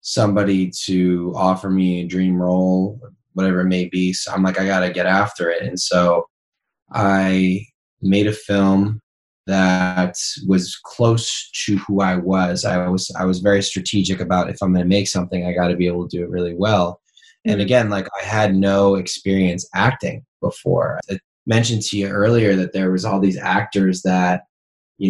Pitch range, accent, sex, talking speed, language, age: 90-100 Hz, American, male, 180 wpm, English, 20-39